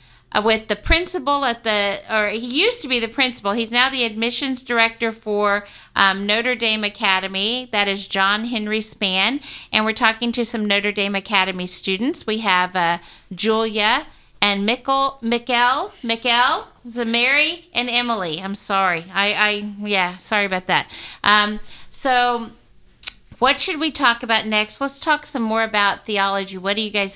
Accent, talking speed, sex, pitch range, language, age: American, 160 wpm, female, 195-235 Hz, English, 50-69